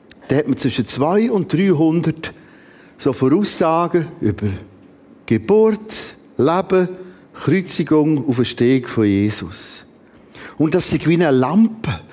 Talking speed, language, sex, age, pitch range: 115 wpm, German, male, 50-69, 135-200 Hz